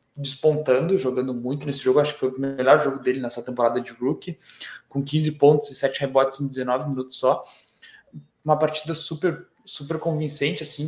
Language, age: Portuguese, 20-39